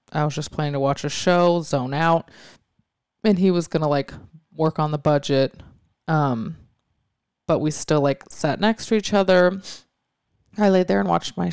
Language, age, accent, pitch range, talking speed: English, 20-39, American, 140-165 Hz, 185 wpm